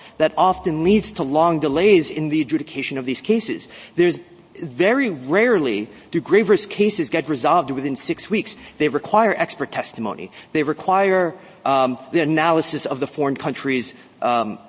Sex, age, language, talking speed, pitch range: male, 30-49, English, 150 wpm, 145-195 Hz